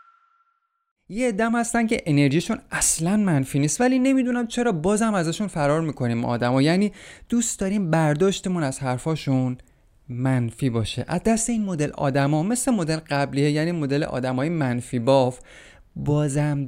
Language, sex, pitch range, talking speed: Persian, male, 130-175 Hz, 135 wpm